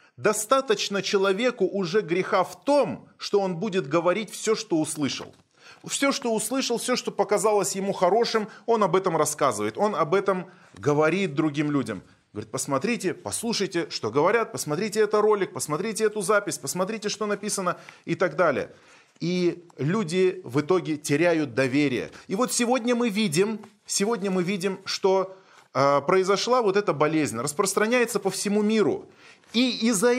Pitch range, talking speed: 175-230 Hz, 145 wpm